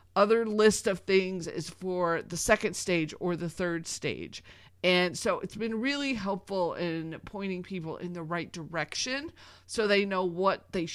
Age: 30-49